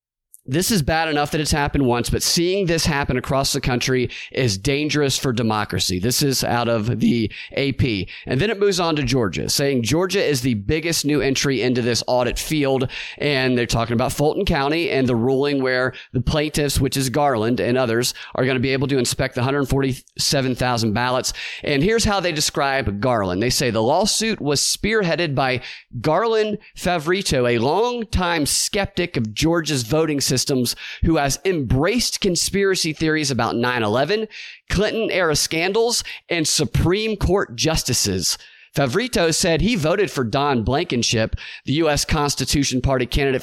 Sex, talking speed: male, 160 wpm